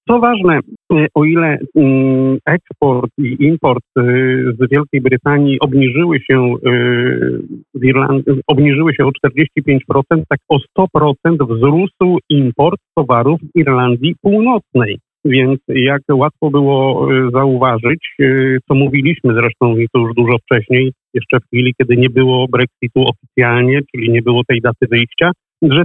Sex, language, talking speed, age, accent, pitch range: male, Polish, 115 wpm, 50-69, native, 125-150 Hz